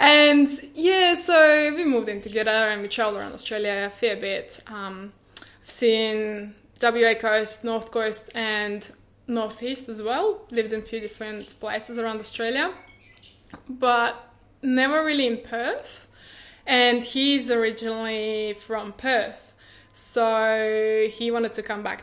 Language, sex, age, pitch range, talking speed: English, female, 10-29, 210-240 Hz, 135 wpm